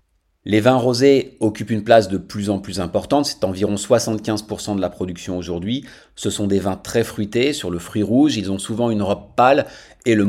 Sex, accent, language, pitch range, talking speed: male, French, French, 100-120 Hz, 210 wpm